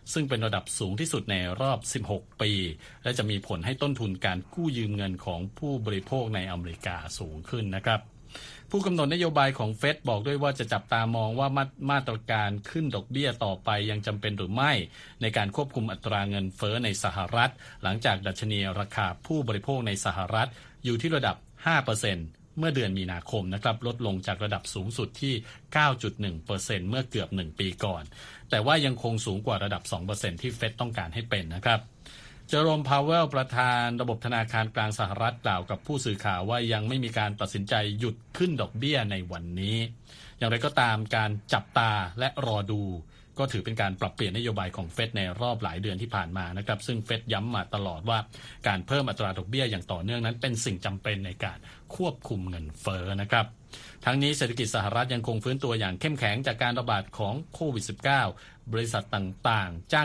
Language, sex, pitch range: Thai, male, 100-125 Hz